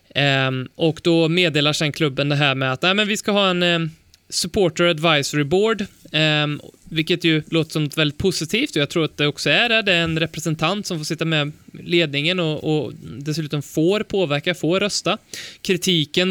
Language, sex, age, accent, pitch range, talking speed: Swedish, male, 20-39, native, 145-180 Hz, 195 wpm